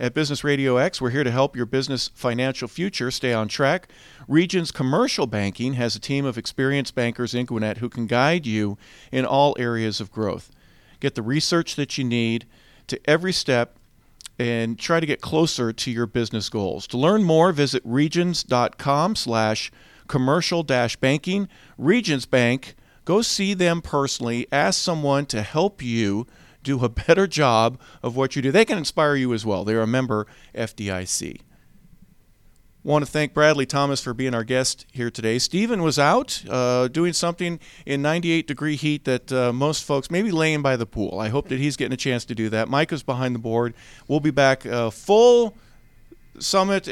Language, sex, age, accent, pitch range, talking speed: English, male, 50-69, American, 120-160 Hz, 180 wpm